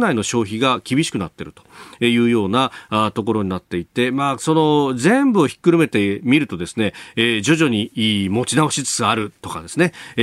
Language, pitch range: Japanese, 105-150 Hz